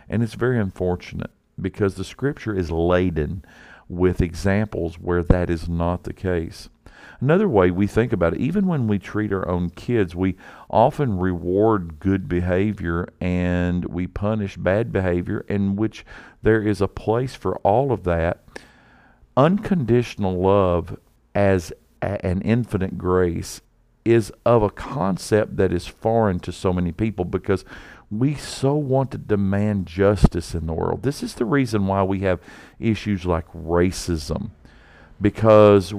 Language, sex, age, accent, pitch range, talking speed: English, male, 50-69, American, 90-110 Hz, 145 wpm